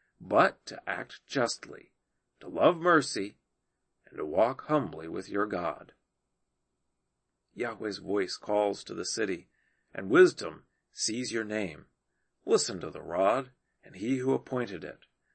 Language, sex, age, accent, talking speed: English, male, 40-59, American, 135 wpm